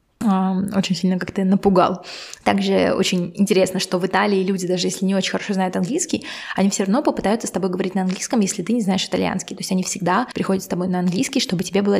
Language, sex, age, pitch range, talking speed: Russian, female, 20-39, 185-210 Hz, 220 wpm